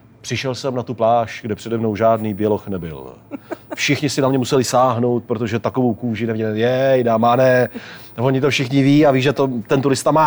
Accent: native